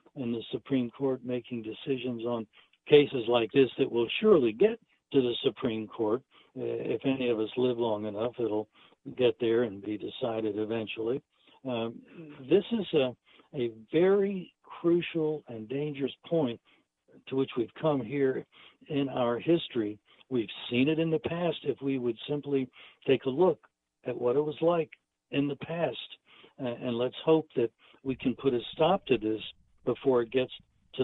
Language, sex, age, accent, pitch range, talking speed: English, male, 60-79, American, 120-150 Hz, 170 wpm